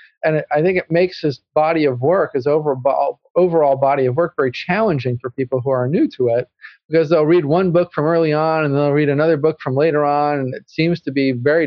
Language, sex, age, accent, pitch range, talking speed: English, male, 40-59, American, 125-155 Hz, 235 wpm